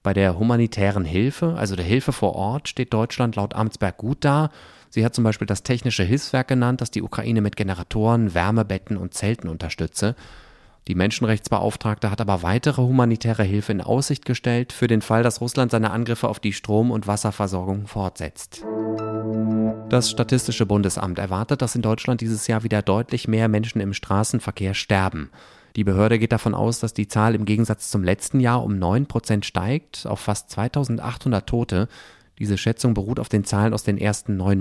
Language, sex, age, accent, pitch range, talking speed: German, male, 30-49, German, 100-120 Hz, 175 wpm